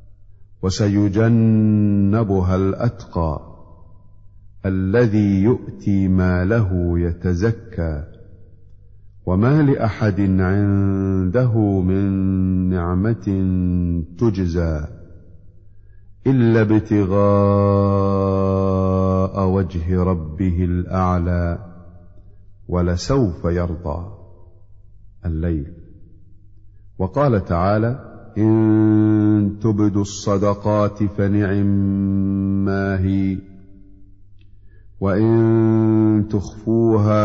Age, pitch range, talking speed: 50-69, 95-100 Hz, 50 wpm